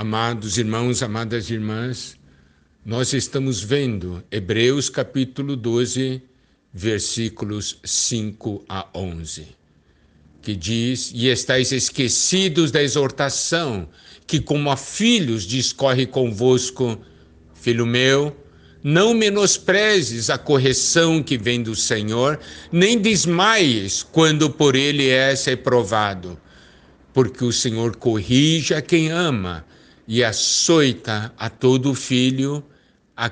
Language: Portuguese